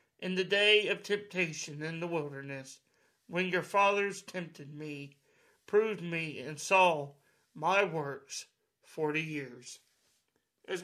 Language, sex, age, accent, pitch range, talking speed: English, male, 60-79, American, 150-190 Hz, 120 wpm